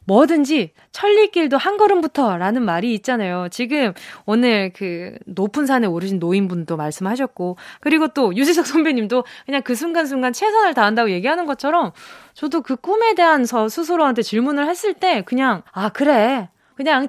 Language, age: Korean, 20-39